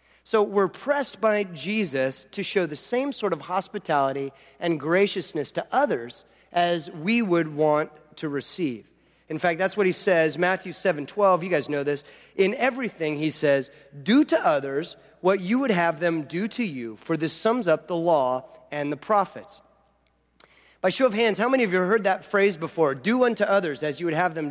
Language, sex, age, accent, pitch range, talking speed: English, male, 30-49, American, 155-205 Hz, 195 wpm